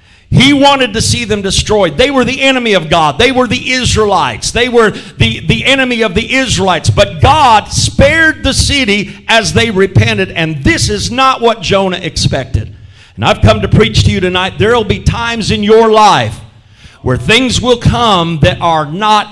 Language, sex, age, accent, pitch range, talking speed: English, male, 50-69, American, 145-240 Hz, 190 wpm